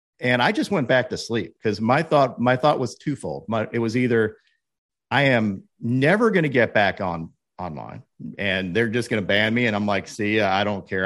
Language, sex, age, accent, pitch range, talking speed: English, male, 50-69, American, 95-135 Hz, 225 wpm